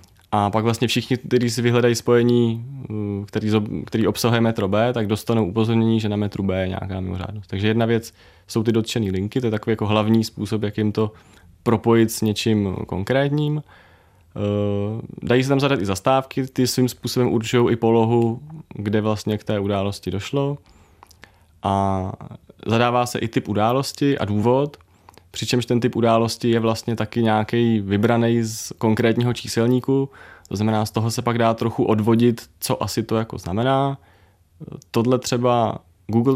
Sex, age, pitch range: male, 20-39, 100-120 Hz